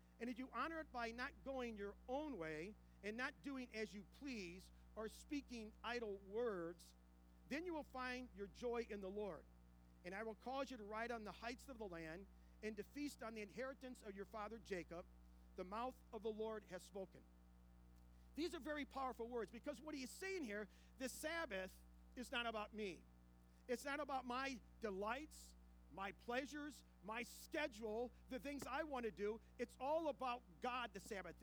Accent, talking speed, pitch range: American, 185 wpm, 190-255 Hz